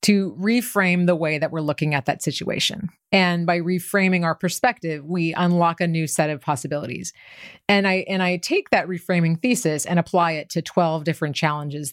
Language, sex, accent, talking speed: English, female, American, 185 wpm